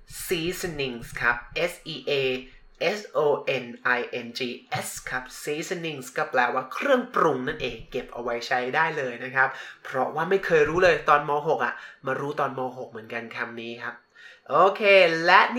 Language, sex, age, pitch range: Thai, male, 20-39, 140-200 Hz